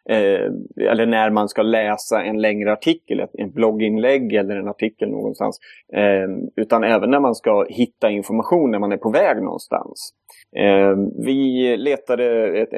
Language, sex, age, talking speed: Swedish, male, 30-49, 155 wpm